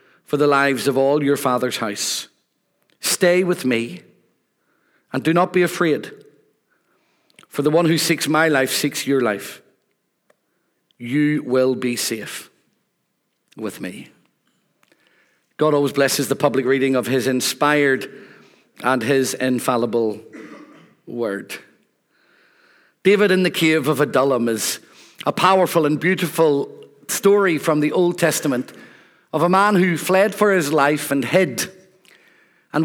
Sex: male